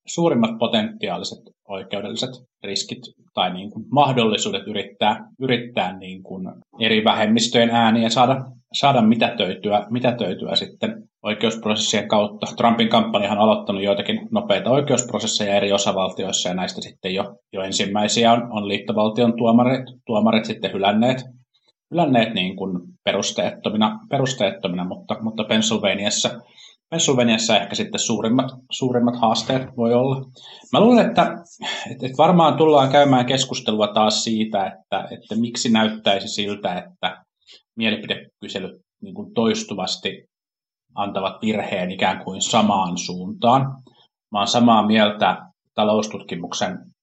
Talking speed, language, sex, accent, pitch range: 115 wpm, Finnish, male, native, 105-130 Hz